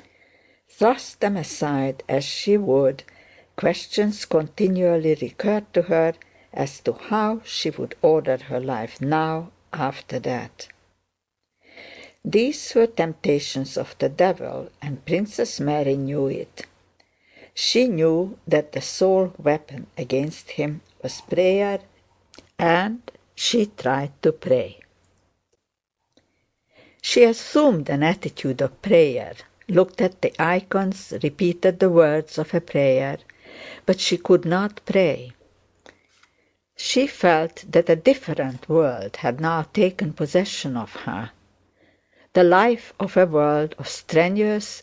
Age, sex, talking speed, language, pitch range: 60-79, female, 120 wpm, English, 150-205 Hz